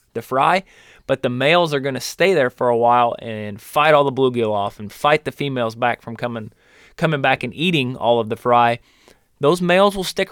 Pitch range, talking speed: 120-155 Hz, 220 wpm